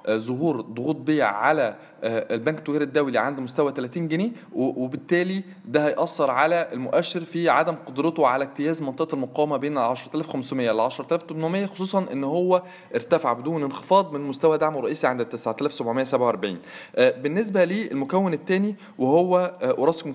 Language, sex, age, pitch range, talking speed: Arabic, male, 20-39, 140-180 Hz, 130 wpm